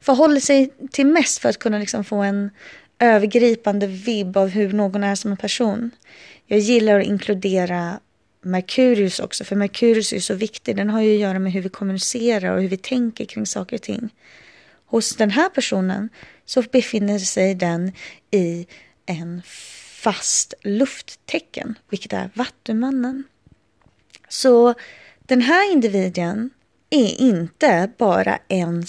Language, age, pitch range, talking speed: Swedish, 20-39, 200-250 Hz, 145 wpm